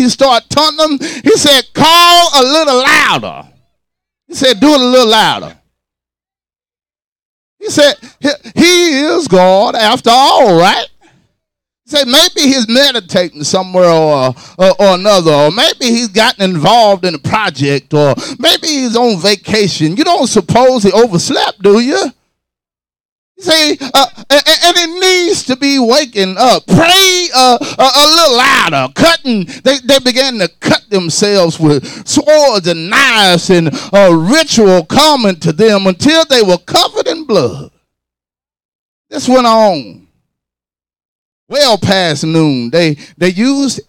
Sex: male